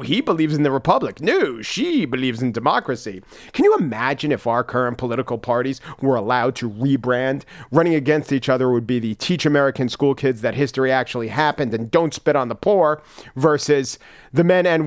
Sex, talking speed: male, 190 wpm